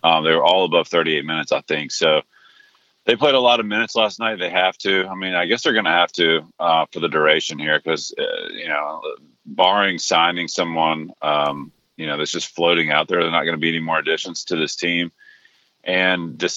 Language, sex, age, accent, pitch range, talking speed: English, male, 40-59, American, 85-120 Hz, 230 wpm